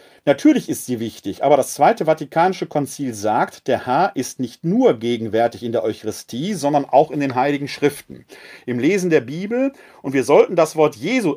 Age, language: 40-59, German